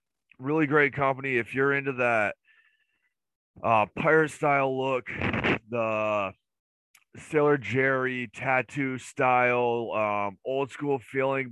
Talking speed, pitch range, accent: 105 wpm, 100-125 Hz, American